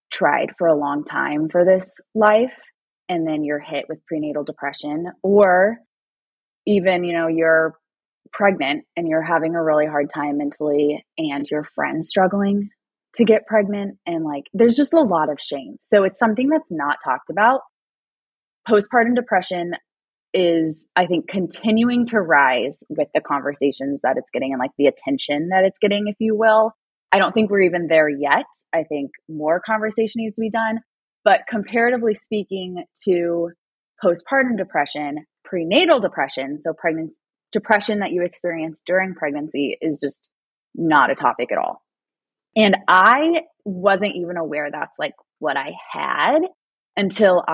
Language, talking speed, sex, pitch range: English, 155 wpm, female, 155-220 Hz